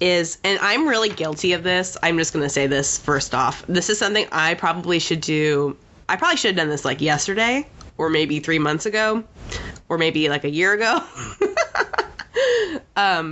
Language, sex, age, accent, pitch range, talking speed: English, female, 20-39, American, 155-230 Hz, 190 wpm